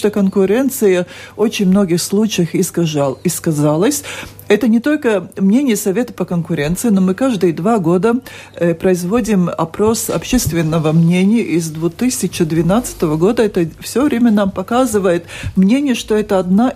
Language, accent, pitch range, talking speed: Russian, native, 175-210 Hz, 130 wpm